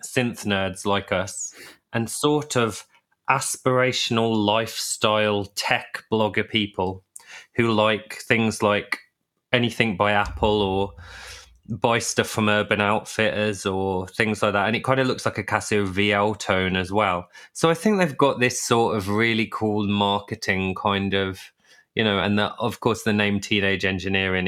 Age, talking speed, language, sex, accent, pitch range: 20-39, 155 wpm, English, male, British, 100-115 Hz